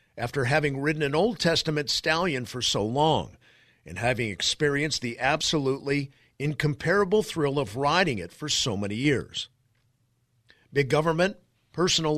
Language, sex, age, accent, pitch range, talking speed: English, male, 50-69, American, 120-160 Hz, 135 wpm